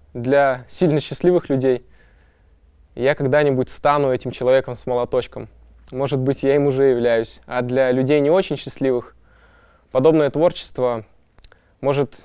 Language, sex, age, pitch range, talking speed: Russian, male, 20-39, 130-160 Hz, 125 wpm